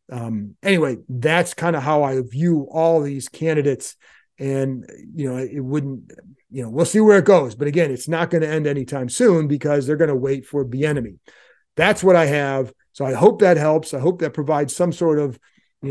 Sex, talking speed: male, 215 wpm